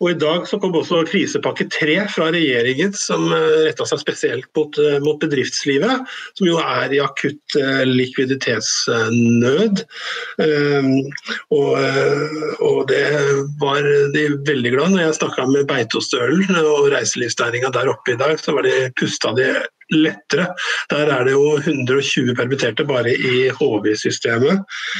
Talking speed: 125 wpm